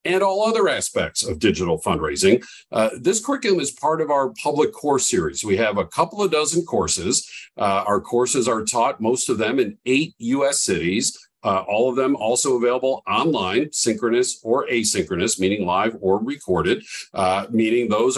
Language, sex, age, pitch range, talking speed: English, male, 50-69, 105-150 Hz, 175 wpm